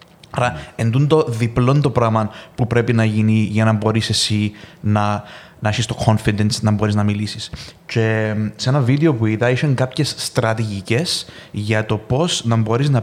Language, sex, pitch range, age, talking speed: Greek, male, 110-140 Hz, 20-39, 175 wpm